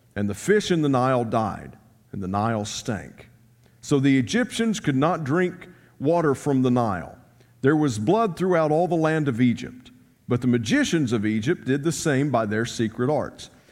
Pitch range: 115-160 Hz